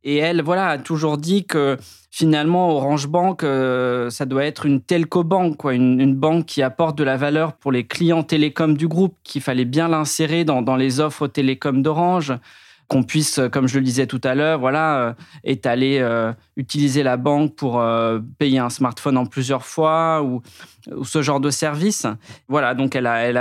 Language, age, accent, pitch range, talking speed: French, 20-39, French, 130-155 Hz, 190 wpm